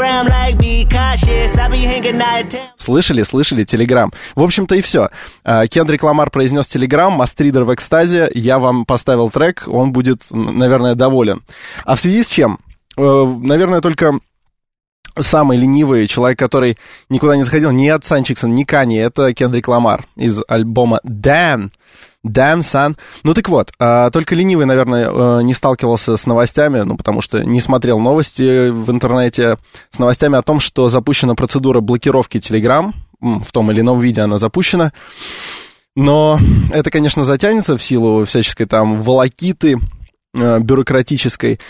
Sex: male